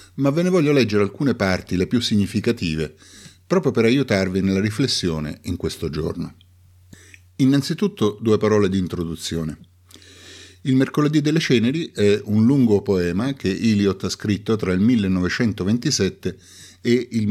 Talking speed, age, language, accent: 140 wpm, 50-69, Italian, native